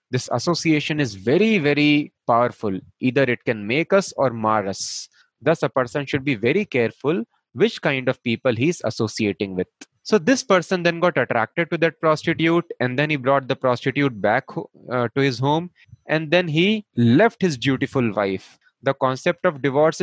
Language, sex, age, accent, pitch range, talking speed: English, male, 20-39, Indian, 120-165 Hz, 180 wpm